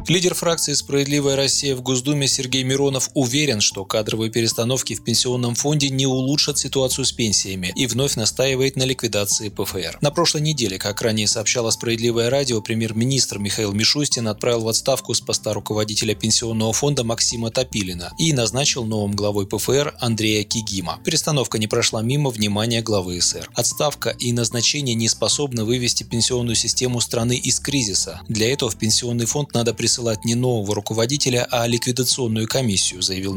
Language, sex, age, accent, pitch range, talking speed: Russian, male, 20-39, native, 110-130 Hz, 155 wpm